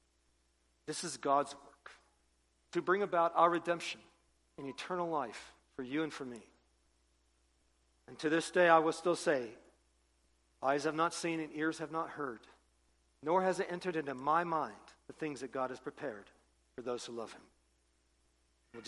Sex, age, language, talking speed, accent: male, 50-69, English, 170 wpm, American